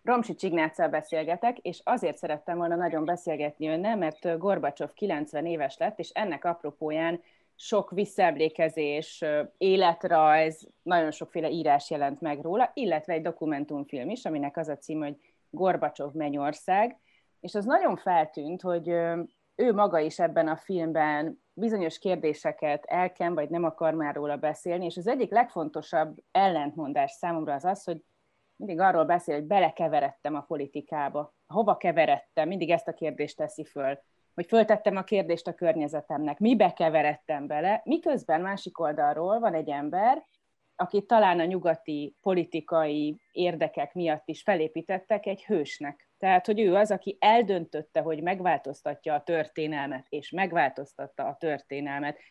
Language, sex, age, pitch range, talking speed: Hungarian, female, 30-49, 150-190 Hz, 140 wpm